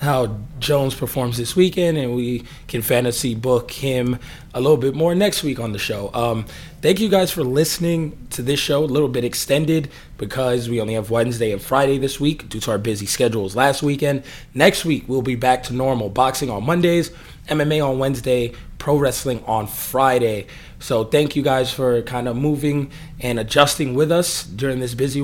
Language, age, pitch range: English, 20-39, 120-145 Hz